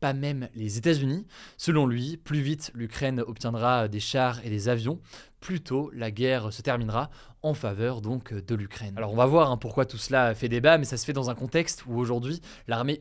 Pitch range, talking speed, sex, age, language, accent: 115-145 Hz, 210 wpm, male, 20-39, French, French